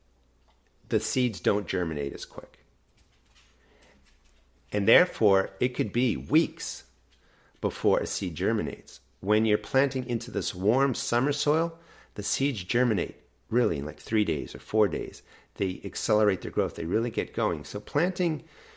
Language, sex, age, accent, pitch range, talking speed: English, male, 50-69, American, 90-120 Hz, 145 wpm